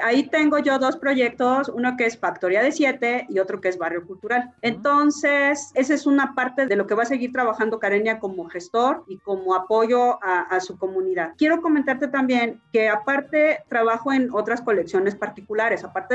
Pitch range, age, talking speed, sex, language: 210-265 Hz, 30-49, 185 wpm, female, Spanish